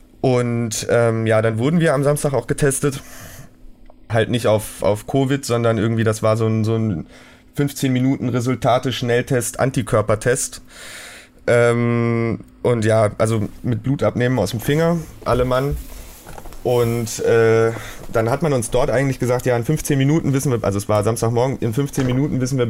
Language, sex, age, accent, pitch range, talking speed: German, male, 30-49, German, 115-130 Hz, 160 wpm